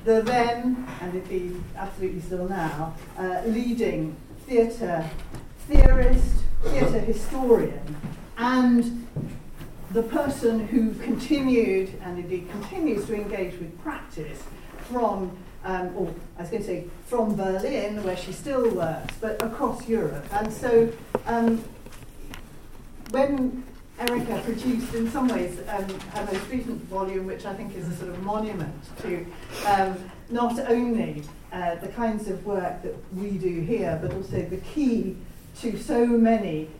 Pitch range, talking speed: 175-230 Hz, 140 wpm